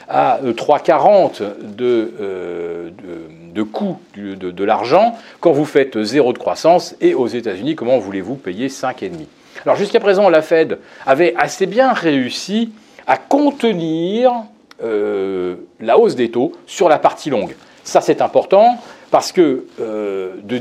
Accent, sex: French, male